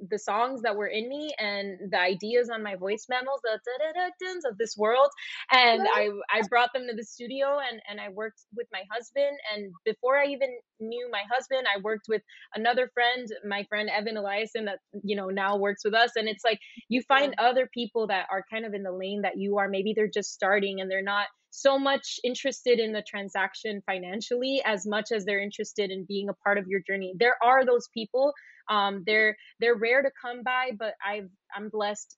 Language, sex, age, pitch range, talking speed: English, female, 20-39, 205-245 Hz, 210 wpm